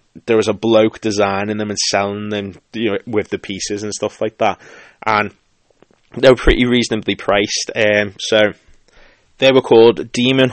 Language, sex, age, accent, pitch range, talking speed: English, male, 20-39, British, 100-115 Hz, 175 wpm